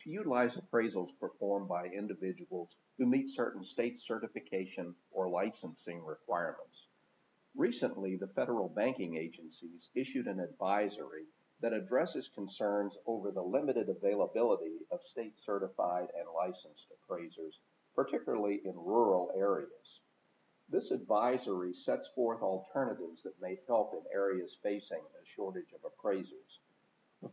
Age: 50-69